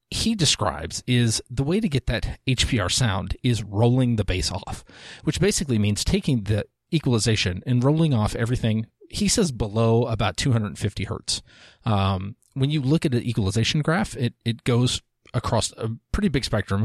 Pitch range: 105-125 Hz